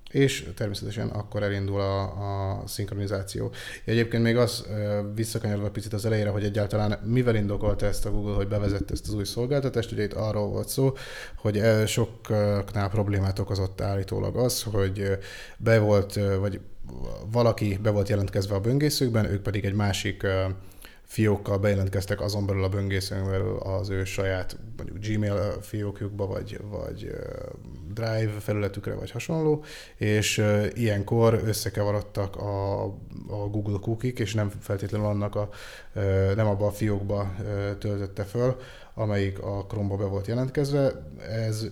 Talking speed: 135 wpm